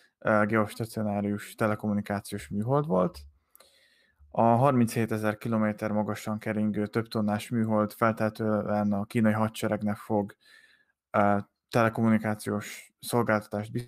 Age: 20-39